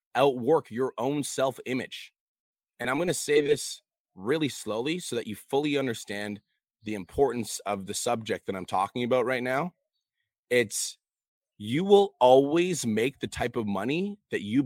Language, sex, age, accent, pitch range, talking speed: English, male, 30-49, American, 120-180 Hz, 165 wpm